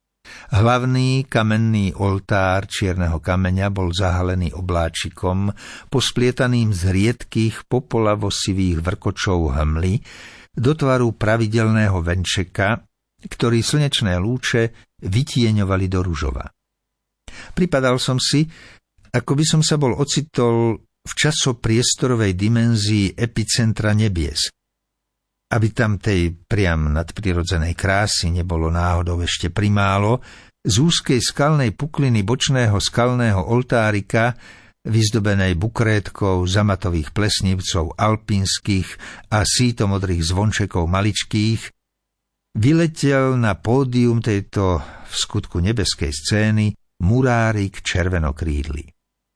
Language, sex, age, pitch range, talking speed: Slovak, male, 60-79, 90-120 Hz, 90 wpm